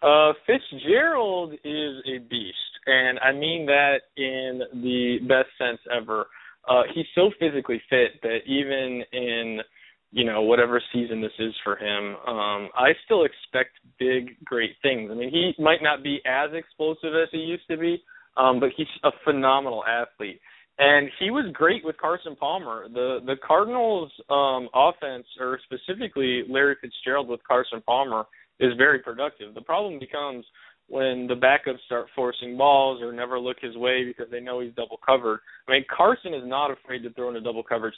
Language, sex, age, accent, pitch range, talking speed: English, male, 20-39, American, 120-150 Hz, 170 wpm